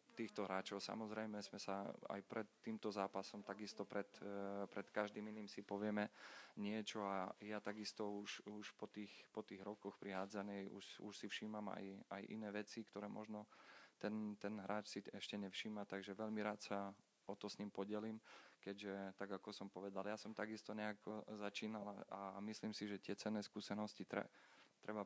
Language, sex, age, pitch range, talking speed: Slovak, male, 30-49, 100-105 Hz, 170 wpm